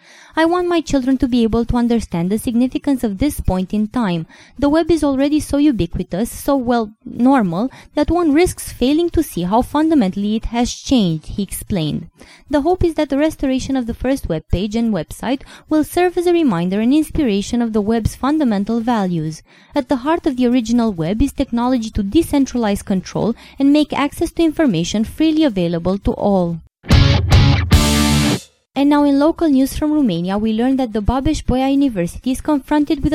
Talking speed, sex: 180 wpm, female